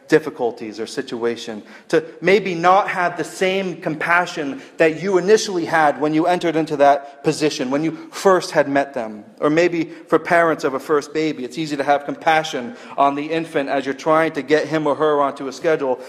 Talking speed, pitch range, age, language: 200 wpm, 135-160 Hz, 40-59, English